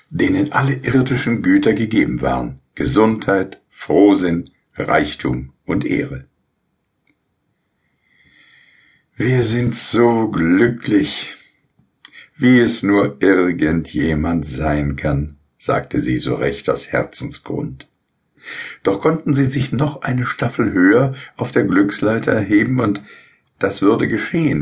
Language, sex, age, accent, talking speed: German, male, 60-79, German, 105 wpm